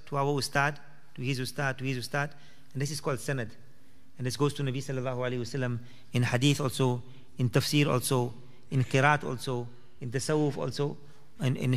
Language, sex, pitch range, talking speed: English, male, 130-150 Hz, 185 wpm